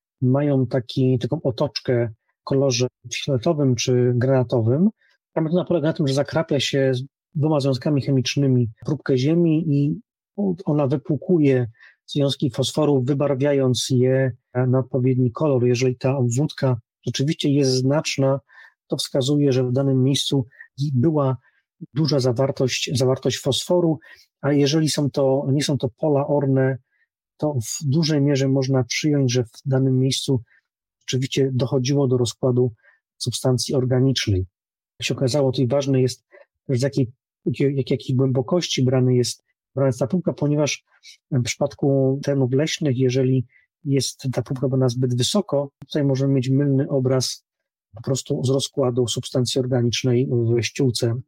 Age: 30-49